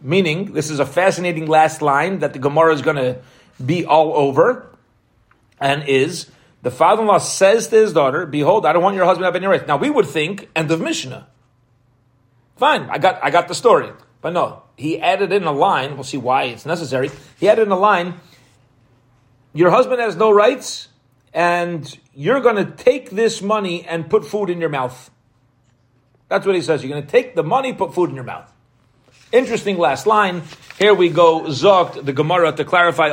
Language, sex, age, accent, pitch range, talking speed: English, male, 40-59, American, 130-180 Hz, 195 wpm